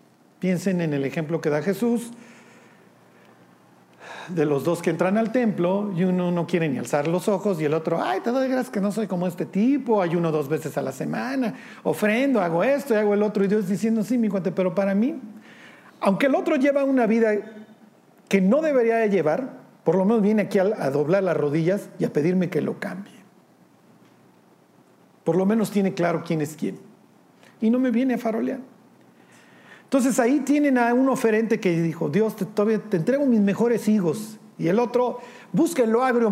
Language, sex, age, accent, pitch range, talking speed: Spanish, male, 50-69, Mexican, 175-230 Hz, 195 wpm